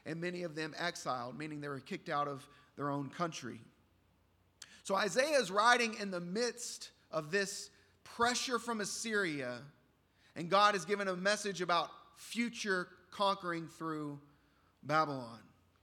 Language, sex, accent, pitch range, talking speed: English, male, American, 145-195 Hz, 140 wpm